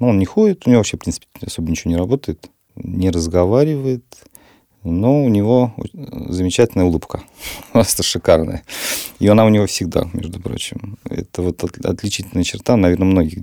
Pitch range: 85-120 Hz